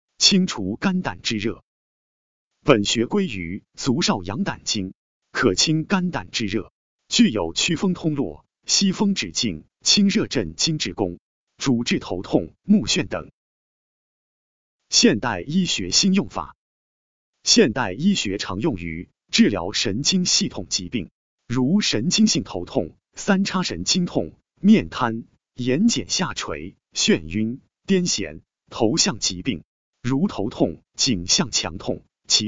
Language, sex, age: Chinese, male, 30-49